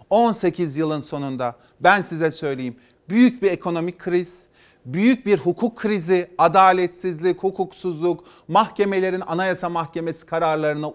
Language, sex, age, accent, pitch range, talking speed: Turkish, male, 40-59, native, 155-190 Hz, 110 wpm